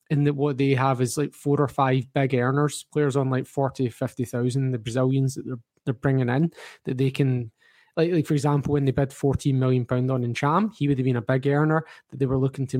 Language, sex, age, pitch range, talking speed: English, male, 20-39, 130-150 Hz, 250 wpm